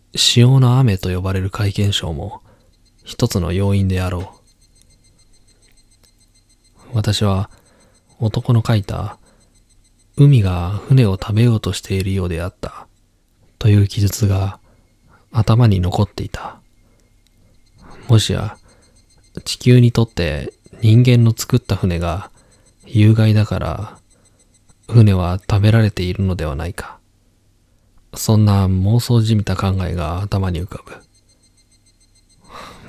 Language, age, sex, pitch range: Japanese, 20-39, male, 95-115 Hz